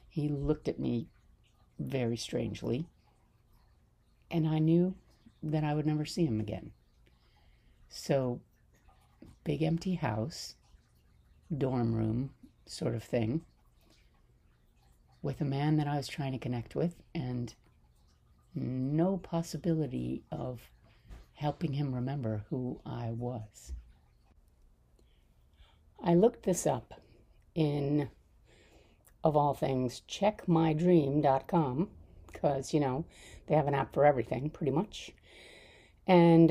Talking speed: 110 wpm